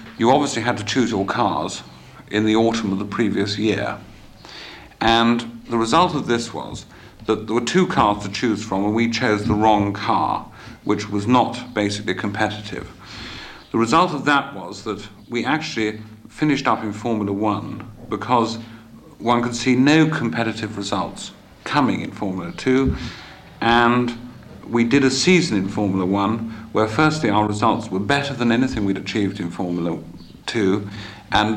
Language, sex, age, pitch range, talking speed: English, male, 50-69, 100-120 Hz, 160 wpm